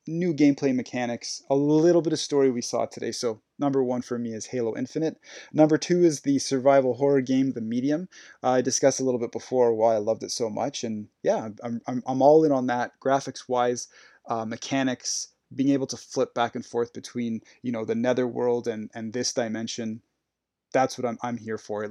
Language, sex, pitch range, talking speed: English, male, 120-140 Hz, 210 wpm